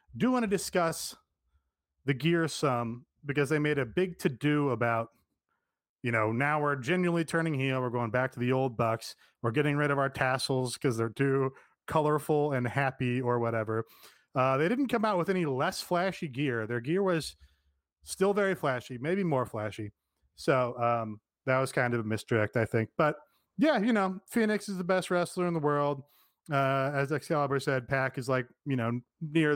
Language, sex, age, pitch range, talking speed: English, male, 30-49, 125-170 Hz, 190 wpm